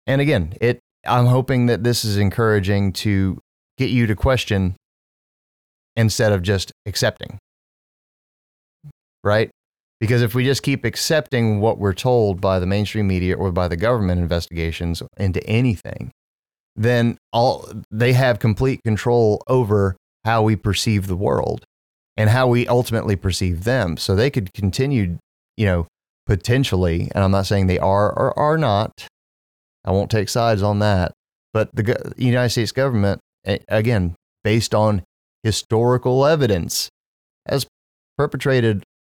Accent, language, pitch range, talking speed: American, English, 95-120 Hz, 140 wpm